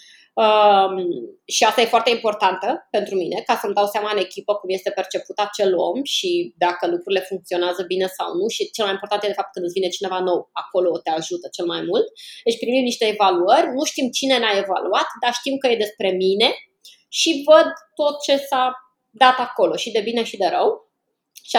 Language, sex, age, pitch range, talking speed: Romanian, female, 20-39, 205-285 Hz, 205 wpm